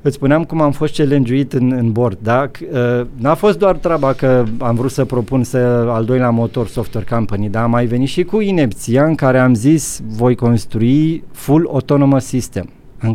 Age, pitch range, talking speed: 20-39, 115-135 Hz, 200 wpm